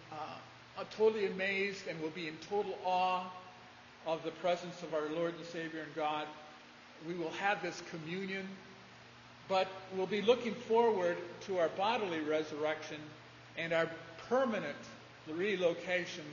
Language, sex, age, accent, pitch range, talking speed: English, male, 50-69, American, 160-195 Hz, 140 wpm